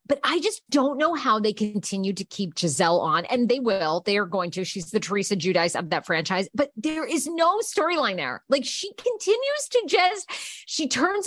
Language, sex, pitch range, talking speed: English, female, 190-270 Hz, 210 wpm